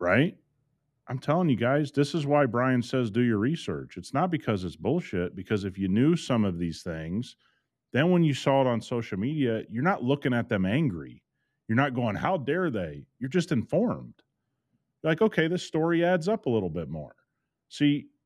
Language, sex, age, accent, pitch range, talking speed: English, male, 40-59, American, 105-145 Hz, 195 wpm